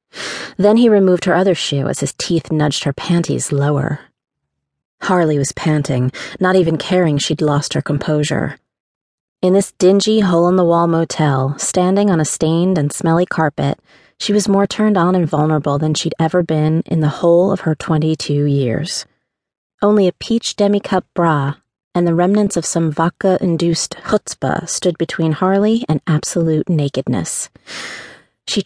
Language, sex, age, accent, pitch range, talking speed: English, female, 30-49, American, 155-190 Hz, 150 wpm